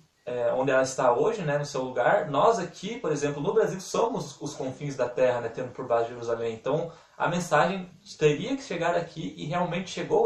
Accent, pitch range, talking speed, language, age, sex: Brazilian, 130-160 Hz, 205 wpm, Portuguese, 20-39, male